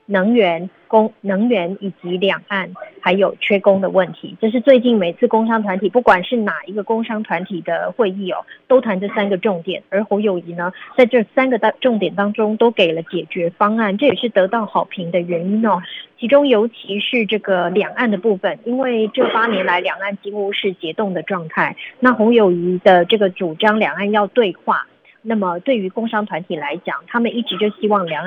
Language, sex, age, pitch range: Chinese, female, 20-39, 185-225 Hz